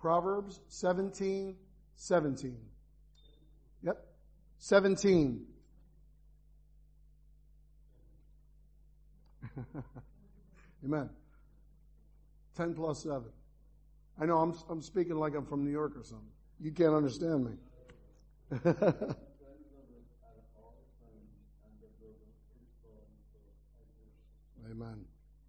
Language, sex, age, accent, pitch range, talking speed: English, male, 50-69, American, 140-210 Hz, 60 wpm